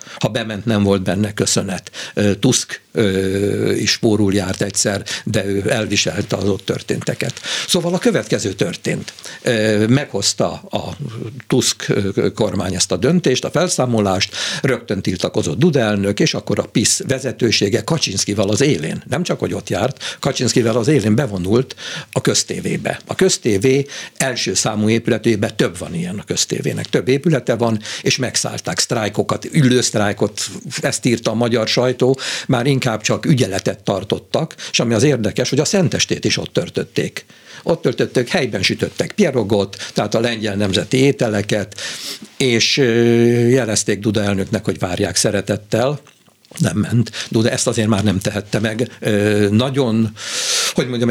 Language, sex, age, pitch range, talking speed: Hungarian, male, 60-79, 105-125 Hz, 140 wpm